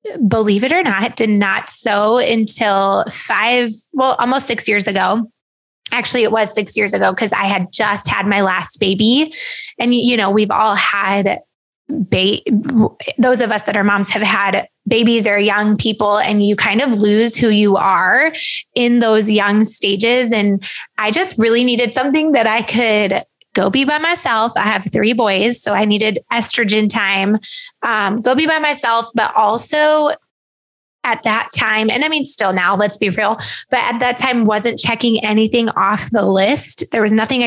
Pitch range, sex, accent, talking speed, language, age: 205-245 Hz, female, American, 180 wpm, English, 20-39